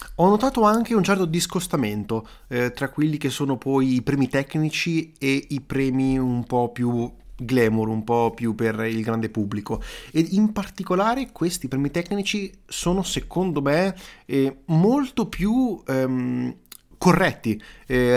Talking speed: 140 wpm